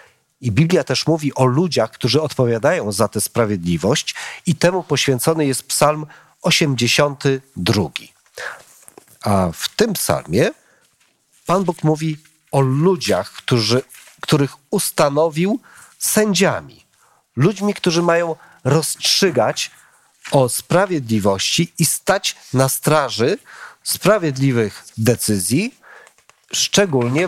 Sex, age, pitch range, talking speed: male, 40-59, 125-170 Hz, 95 wpm